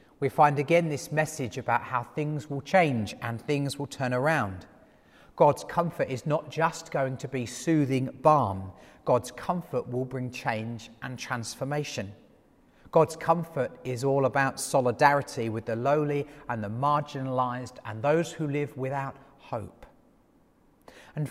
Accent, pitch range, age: British, 120-150 Hz, 40-59